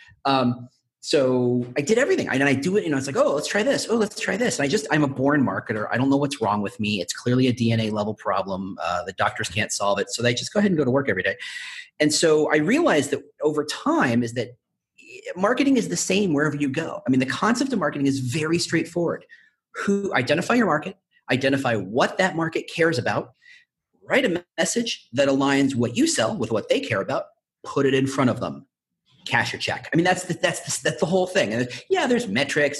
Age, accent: 40-59, American